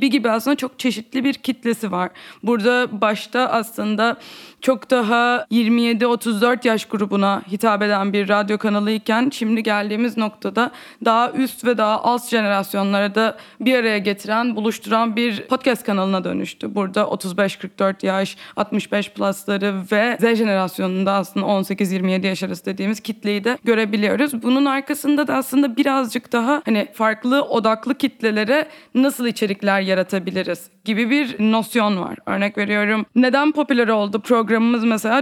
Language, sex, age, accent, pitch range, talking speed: Turkish, female, 20-39, native, 210-255 Hz, 135 wpm